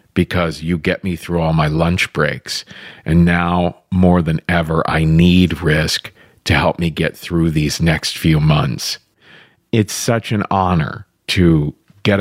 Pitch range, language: 85-115 Hz, English